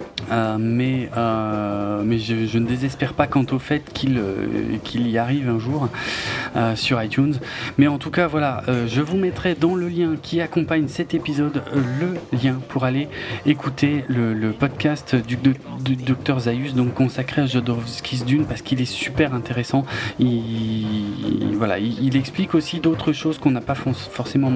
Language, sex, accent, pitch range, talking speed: French, male, French, 115-145 Hz, 180 wpm